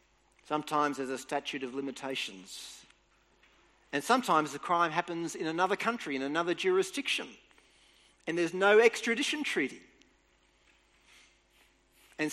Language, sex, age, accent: English, male, 40-59, Australian